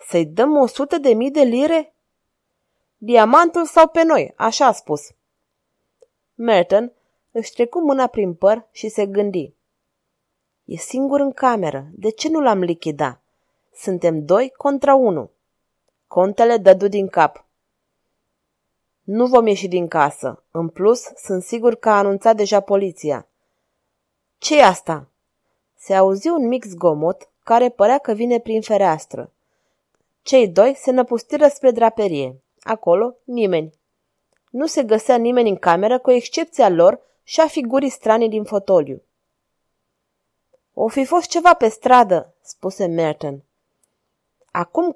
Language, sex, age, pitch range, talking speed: Romanian, female, 20-39, 195-265 Hz, 135 wpm